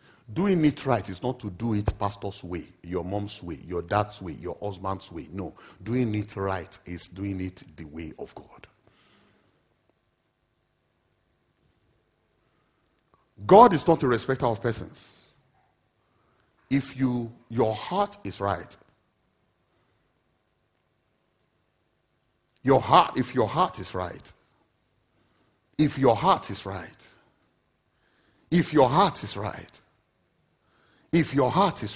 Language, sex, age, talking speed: English, male, 50-69, 120 wpm